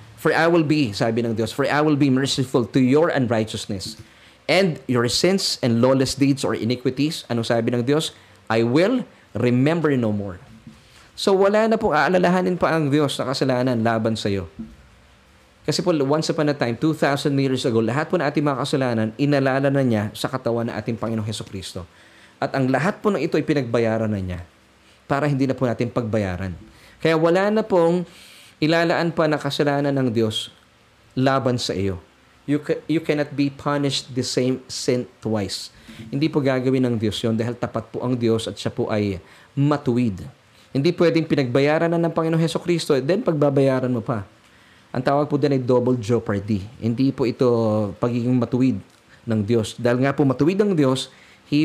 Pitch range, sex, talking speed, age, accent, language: 110-150 Hz, male, 180 wpm, 20-39, native, Filipino